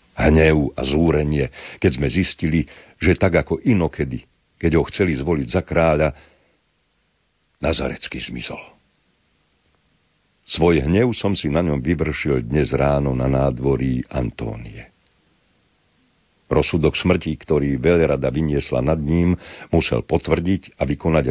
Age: 60-79